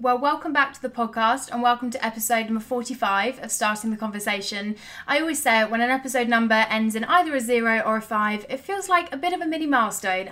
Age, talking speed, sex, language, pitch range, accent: 20-39, 235 wpm, female, English, 215-265 Hz, British